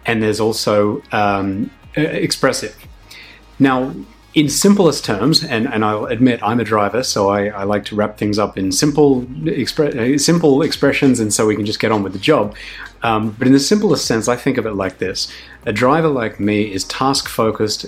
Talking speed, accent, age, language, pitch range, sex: 190 wpm, Australian, 30-49, English, 105-135 Hz, male